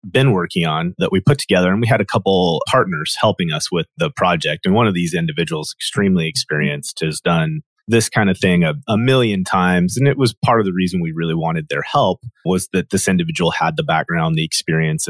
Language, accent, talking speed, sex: English, American, 225 wpm, male